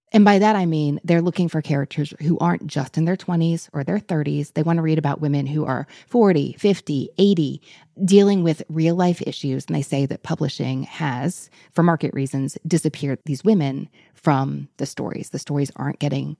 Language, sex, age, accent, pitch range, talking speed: English, female, 30-49, American, 145-185 Hz, 190 wpm